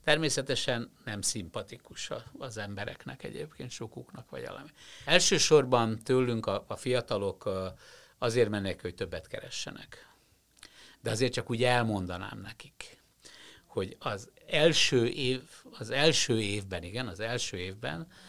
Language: Hungarian